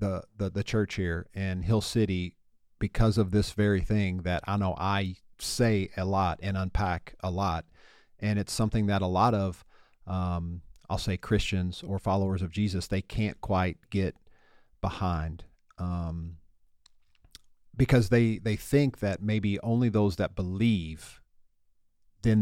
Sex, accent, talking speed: male, American, 145 wpm